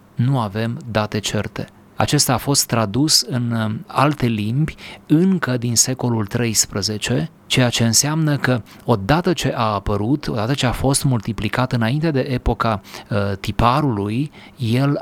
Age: 30-49